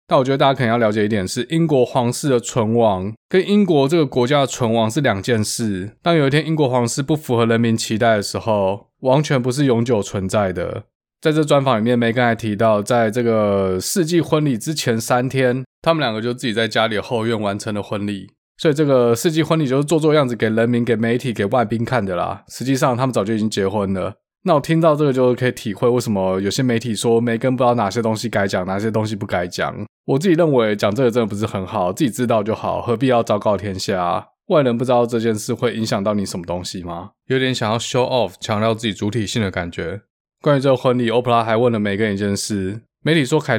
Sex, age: male, 20-39